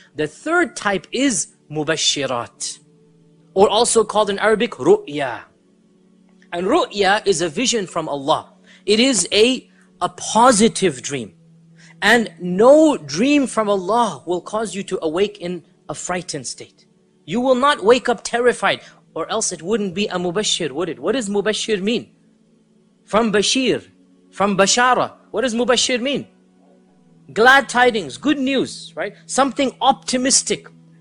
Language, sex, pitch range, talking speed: English, male, 175-230 Hz, 140 wpm